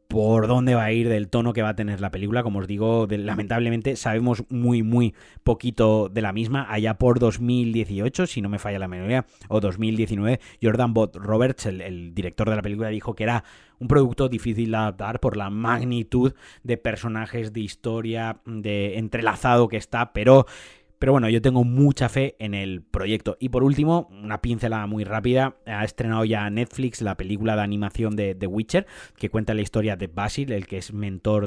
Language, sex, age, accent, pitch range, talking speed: Spanish, male, 30-49, Spanish, 105-120 Hz, 195 wpm